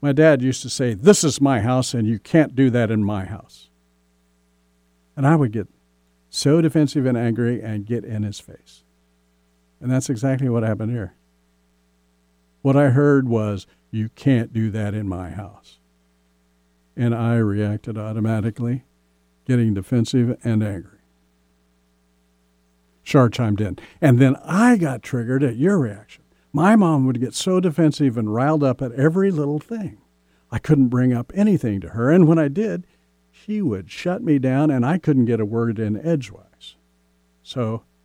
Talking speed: 165 wpm